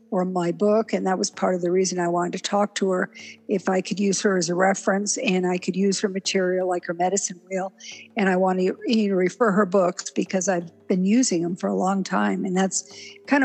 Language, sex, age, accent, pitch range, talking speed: English, female, 60-79, American, 185-210 Hz, 235 wpm